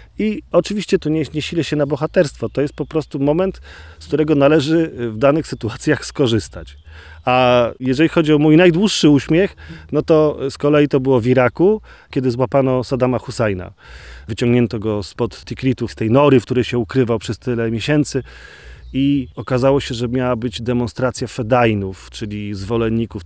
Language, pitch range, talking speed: Polish, 110-145 Hz, 165 wpm